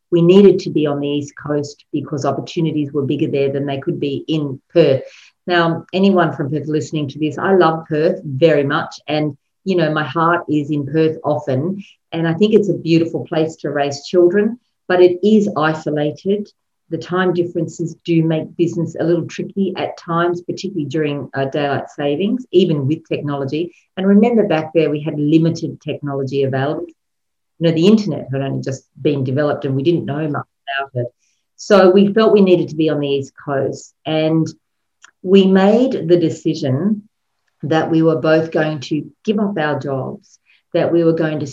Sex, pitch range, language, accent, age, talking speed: female, 145-175 Hz, English, Australian, 50-69, 185 wpm